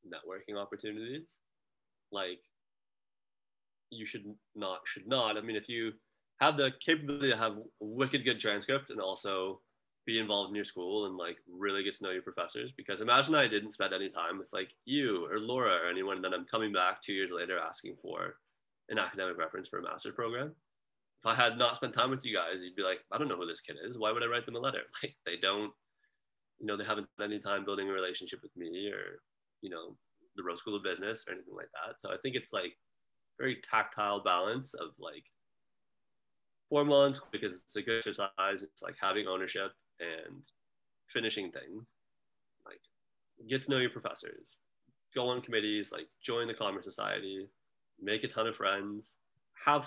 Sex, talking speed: male, 195 wpm